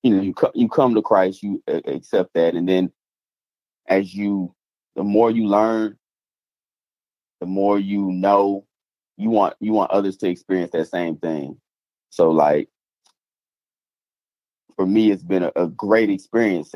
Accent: American